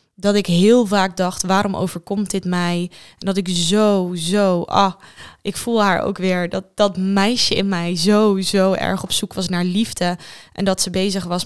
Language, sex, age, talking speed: Dutch, female, 20-39, 200 wpm